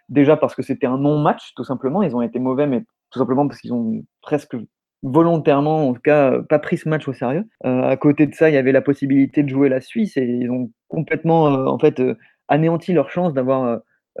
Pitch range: 135-170 Hz